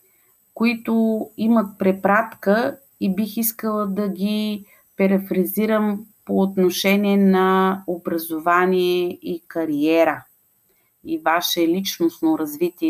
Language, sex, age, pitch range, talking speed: Bulgarian, female, 30-49, 170-220 Hz, 90 wpm